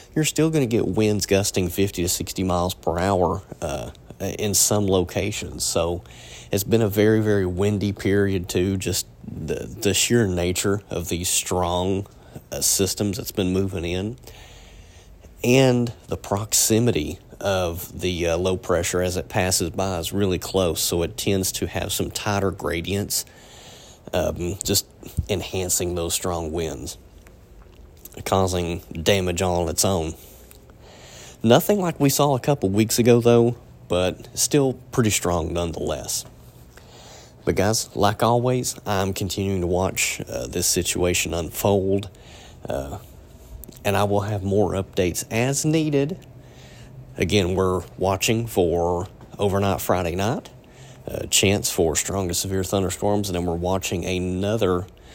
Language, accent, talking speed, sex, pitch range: English, American, 140 wpm, male, 90-105 Hz